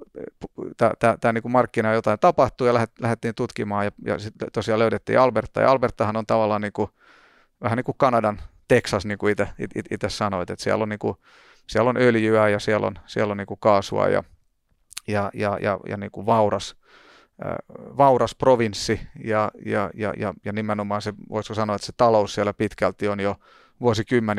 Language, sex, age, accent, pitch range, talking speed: Finnish, male, 30-49, native, 105-120 Hz, 170 wpm